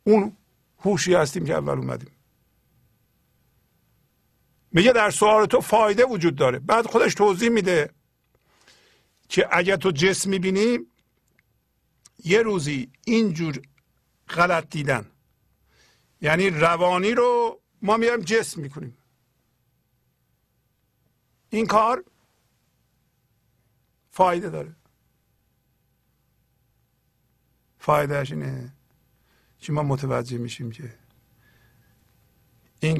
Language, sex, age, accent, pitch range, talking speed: English, male, 50-69, Turkish, 120-160 Hz, 85 wpm